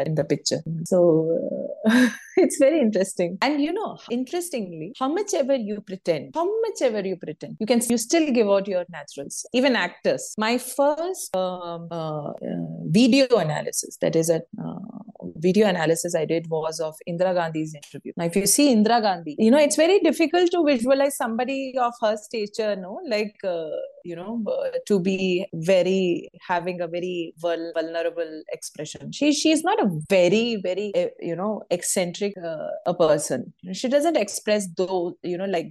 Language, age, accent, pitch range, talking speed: English, 30-49, Indian, 170-245 Hz, 175 wpm